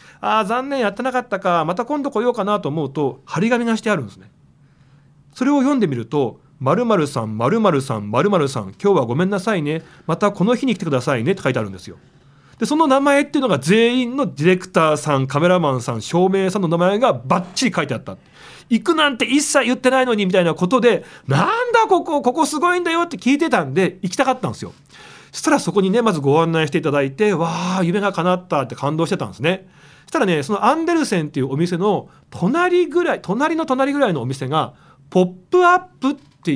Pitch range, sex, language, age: 145-235 Hz, male, Japanese, 40-59